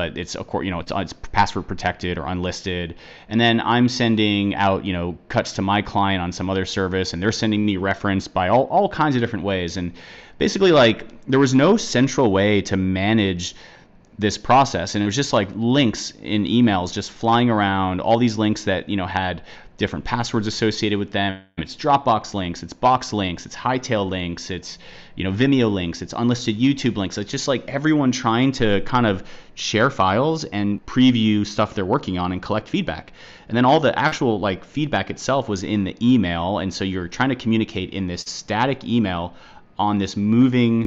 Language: English